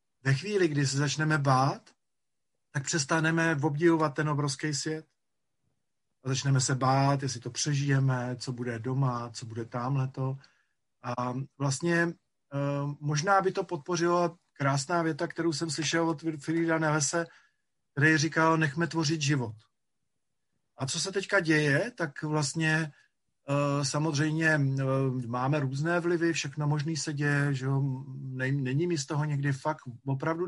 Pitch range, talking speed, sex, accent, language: 135-160 Hz, 135 wpm, male, native, Czech